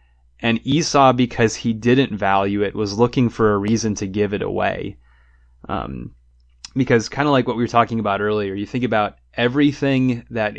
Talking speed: 180 wpm